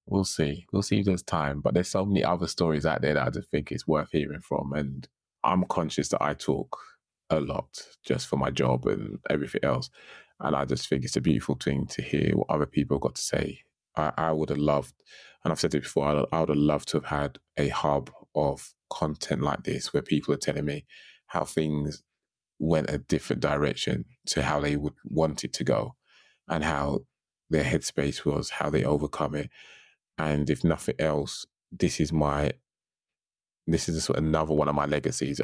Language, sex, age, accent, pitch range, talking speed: English, male, 20-39, British, 70-80 Hz, 210 wpm